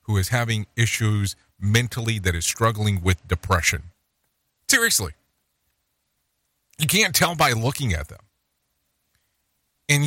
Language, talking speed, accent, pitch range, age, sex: English, 115 wpm, American, 90-145 Hz, 40-59, male